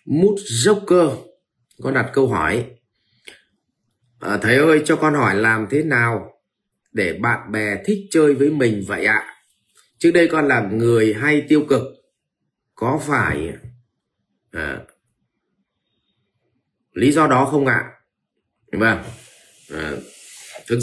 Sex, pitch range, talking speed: male, 110-155 Hz, 130 wpm